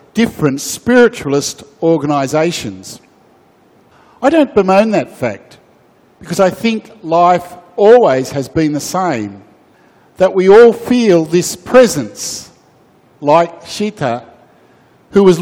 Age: 50-69